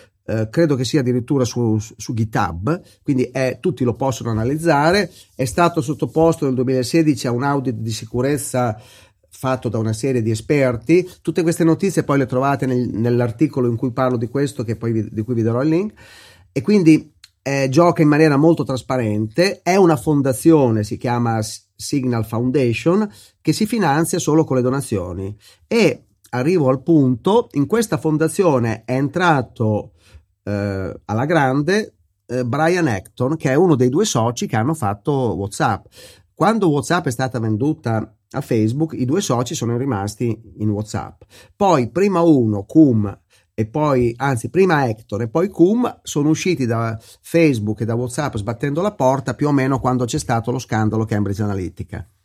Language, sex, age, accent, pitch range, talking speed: Italian, male, 40-59, native, 110-155 Hz, 160 wpm